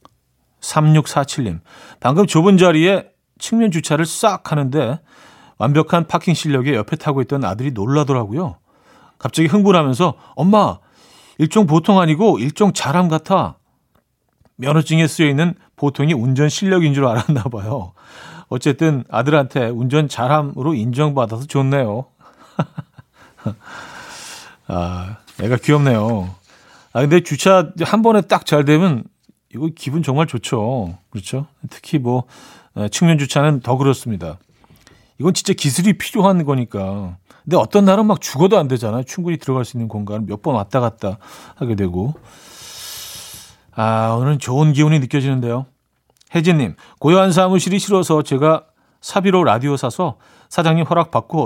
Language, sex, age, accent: Korean, male, 40-59, native